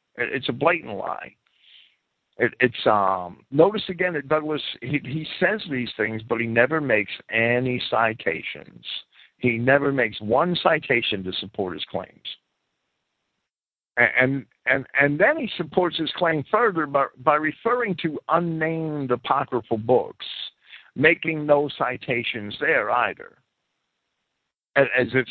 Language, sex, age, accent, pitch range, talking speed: English, male, 60-79, American, 105-160 Hz, 130 wpm